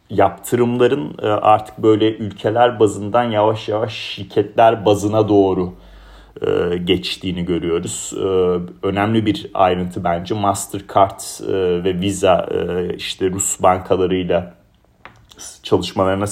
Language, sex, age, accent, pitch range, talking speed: Turkish, male, 40-59, native, 95-110 Hz, 85 wpm